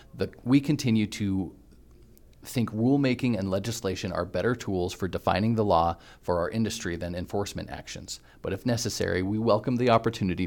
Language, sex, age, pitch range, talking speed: English, male, 40-59, 90-110 Hz, 155 wpm